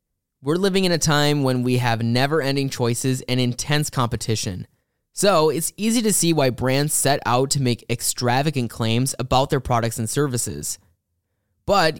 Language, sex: English, male